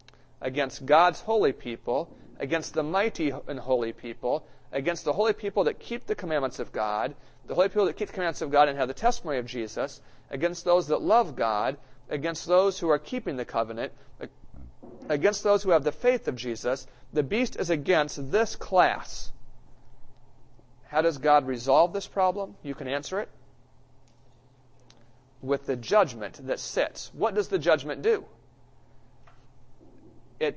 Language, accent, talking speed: English, American, 160 wpm